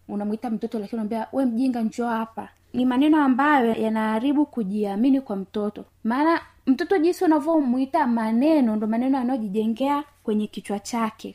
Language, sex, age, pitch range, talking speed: Swahili, female, 20-39, 220-285 Hz, 135 wpm